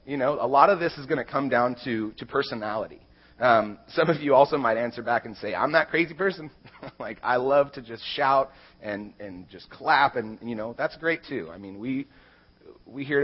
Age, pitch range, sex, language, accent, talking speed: 30-49, 90-140 Hz, male, English, American, 220 wpm